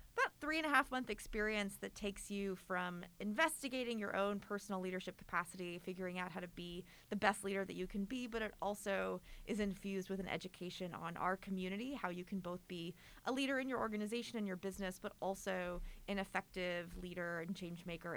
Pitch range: 185-245 Hz